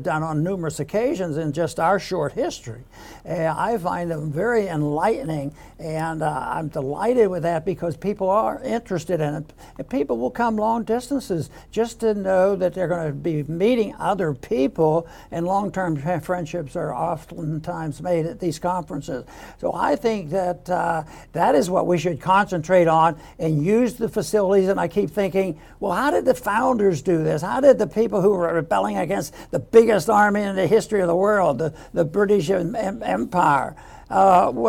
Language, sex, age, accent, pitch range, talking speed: English, male, 60-79, American, 165-215 Hz, 180 wpm